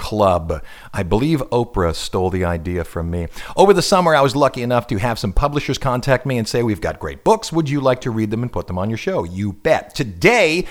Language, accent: English, American